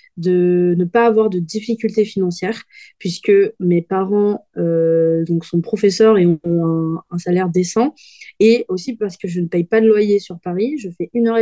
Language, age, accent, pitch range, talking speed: French, 20-39, French, 180-220 Hz, 190 wpm